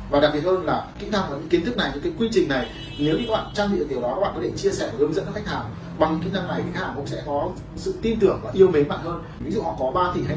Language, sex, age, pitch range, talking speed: Vietnamese, male, 30-49, 125-160 Hz, 355 wpm